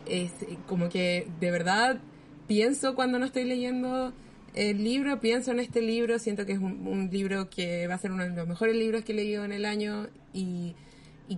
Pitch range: 190-230 Hz